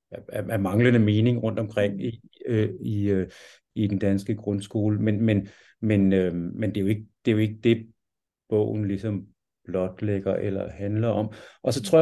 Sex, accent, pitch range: male, native, 100-125 Hz